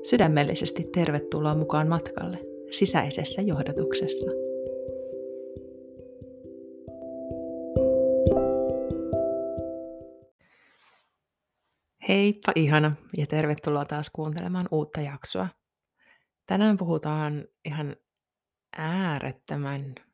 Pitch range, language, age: 130-190 Hz, Finnish, 30-49